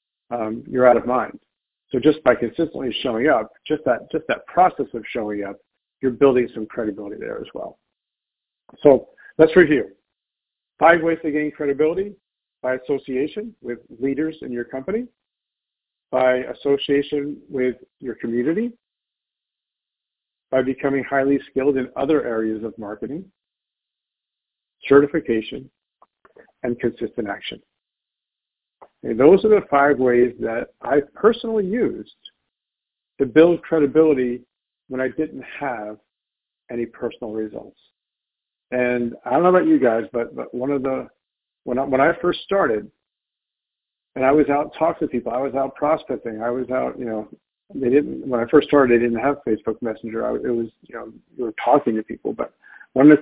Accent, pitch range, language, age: American, 120-150 Hz, English, 50-69